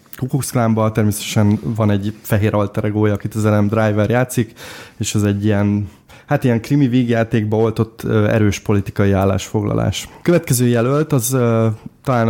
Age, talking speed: 20-39, 135 wpm